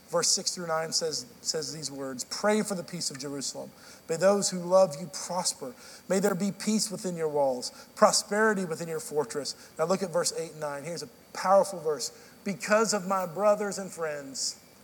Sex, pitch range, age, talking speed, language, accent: male, 160-215 Hz, 50-69, 195 wpm, English, American